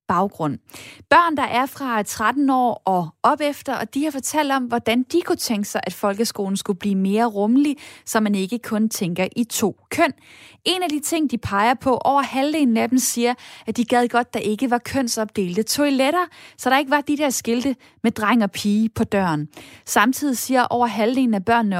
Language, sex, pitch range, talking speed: Danish, female, 205-260 Hz, 205 wpm